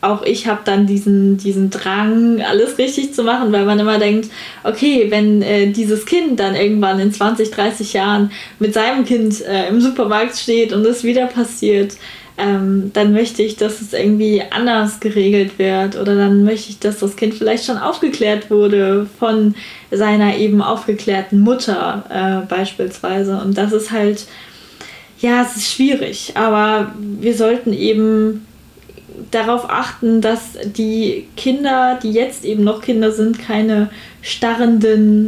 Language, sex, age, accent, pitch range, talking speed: German, female, 10-29, German, 205-230 Hz, 155 wpm